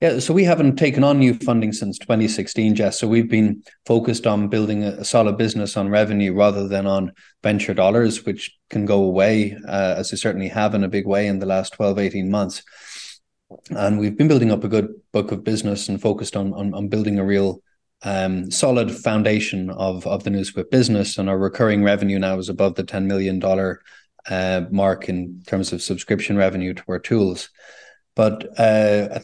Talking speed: 195 wpm